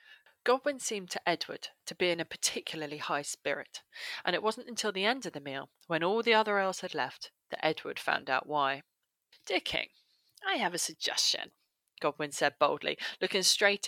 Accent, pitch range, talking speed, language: British, 150-215 Hz, 185 wpm, English